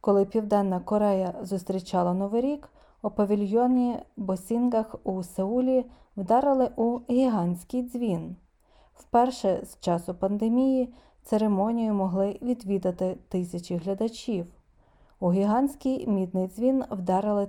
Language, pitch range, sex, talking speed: Ukrainian, 185-235 Hz, female, 100 wpm